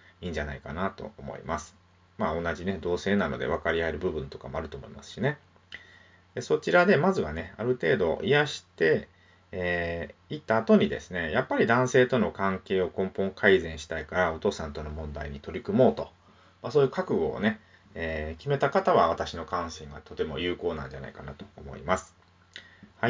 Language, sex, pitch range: Japanese, male, 85-115 Hz